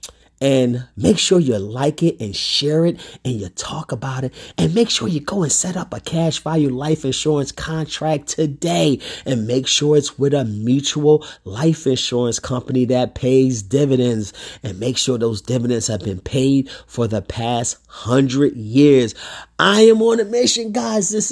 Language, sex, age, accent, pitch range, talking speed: English, male, 30-49, American, 130-170 Hz, 175 wpm